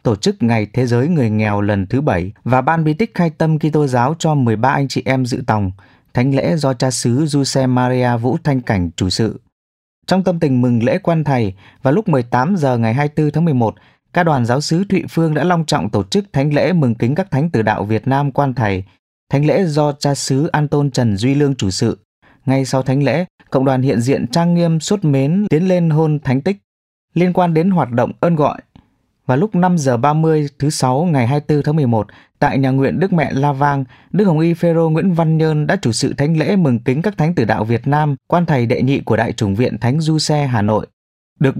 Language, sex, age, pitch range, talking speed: English, male, 20-39, 120-160 Hz, 230 wpm